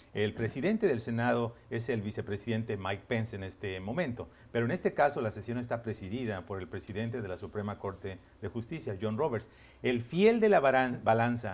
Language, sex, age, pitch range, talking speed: Spanish, male, 40-59, 110-135 Hz, 185 wpm